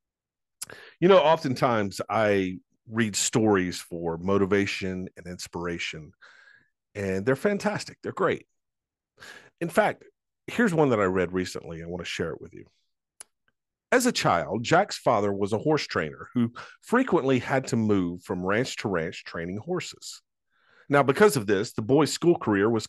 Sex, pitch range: male, 105-170 Hz